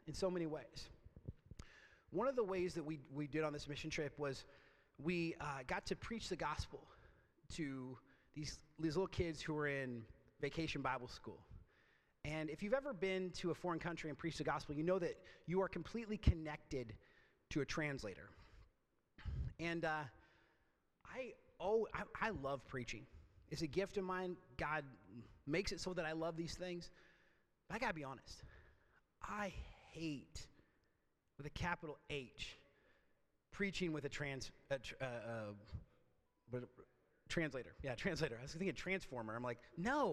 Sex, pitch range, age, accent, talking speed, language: male, 125-180 Hz, 30-49, American, 165 wpm, English